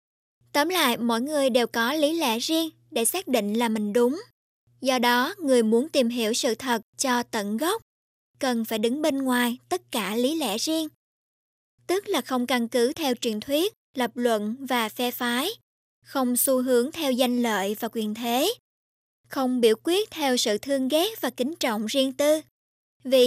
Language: Vietnamese